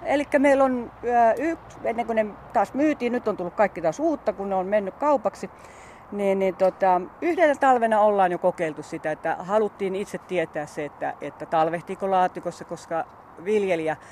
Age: 40-59